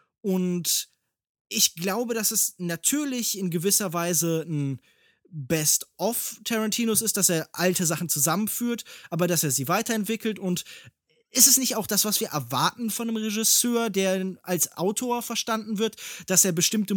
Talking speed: 150 wpm